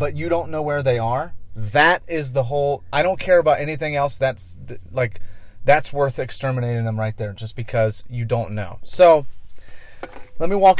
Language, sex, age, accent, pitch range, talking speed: English, male, 30-49, American, 110-135 Hz, 190 wpm